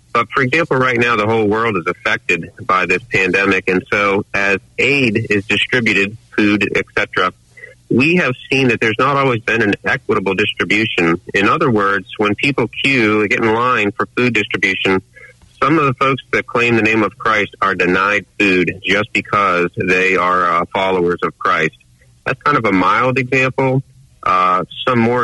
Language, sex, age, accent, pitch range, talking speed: English, male, 30-49, American, 100-125 Hz, 180 wpm